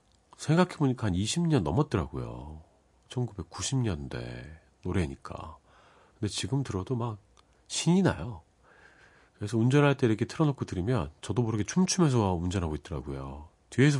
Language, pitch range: Korean, 85-130 Hz